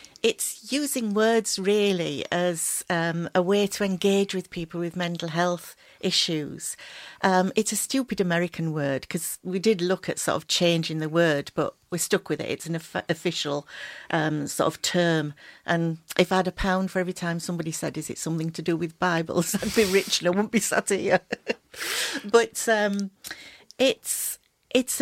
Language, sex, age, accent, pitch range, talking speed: English, female, 50-69, British, 170-215 Hz, 180 wpm